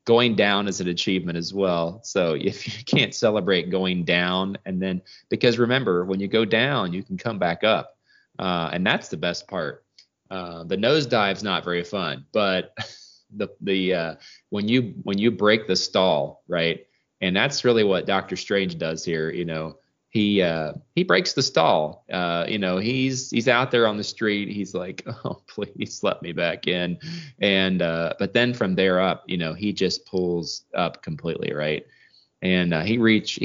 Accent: American